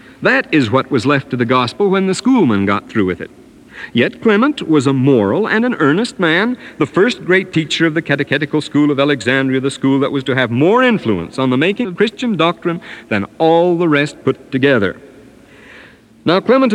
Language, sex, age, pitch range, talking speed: English, male, 60-79, 125-170 Hz, 200 wpm